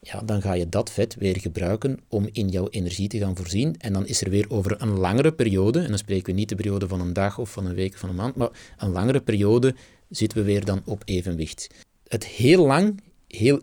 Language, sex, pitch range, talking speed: Dutch, male, 100-125 Hz, 245 wpm